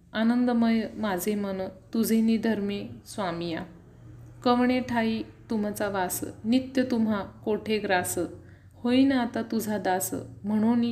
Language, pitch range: Marathi, 195-240 Hz